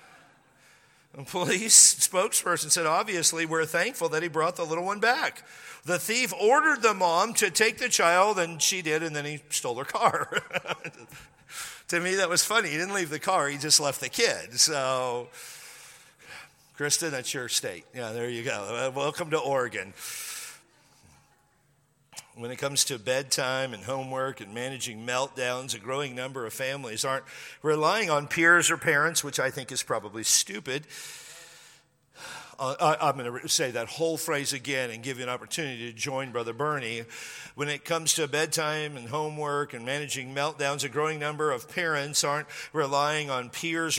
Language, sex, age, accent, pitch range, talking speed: English, male, 50-69, American, 135-170 Hz, 165 wpm